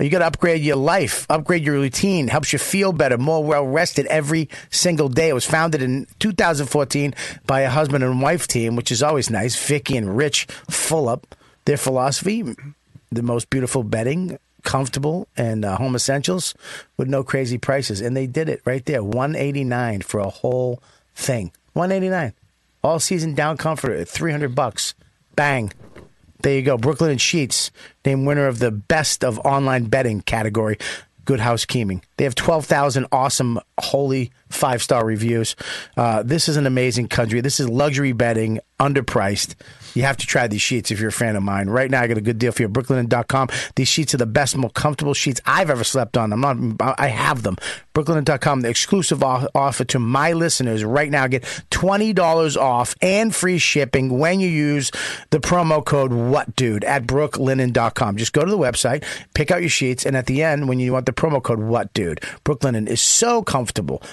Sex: male